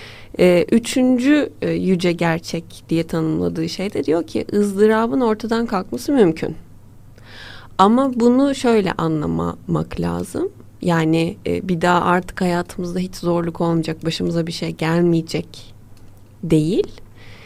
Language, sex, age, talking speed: Turkish, female, 30-49, 105 wpm